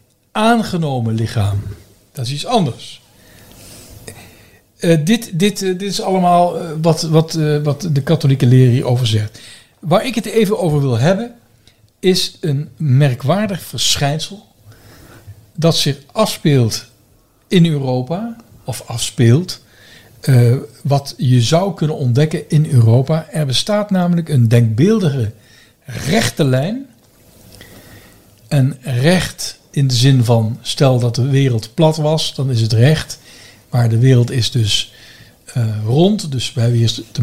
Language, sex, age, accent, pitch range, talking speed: Dutch, male, 60-79, Dutch, 115-165 Hz, 135 wpm